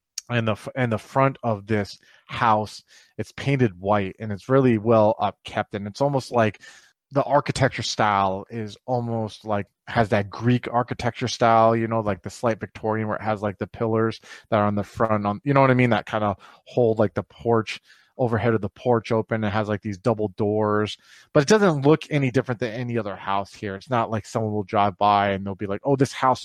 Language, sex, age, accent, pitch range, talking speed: English, male, 30-49, American, 105-120 Hz, 220 wpm